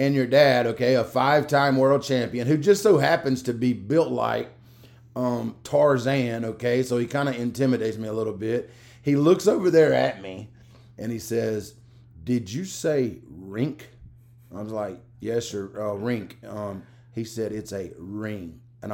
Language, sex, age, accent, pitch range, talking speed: English, male, 30-49, American, 115-135 Hz, 175 wpm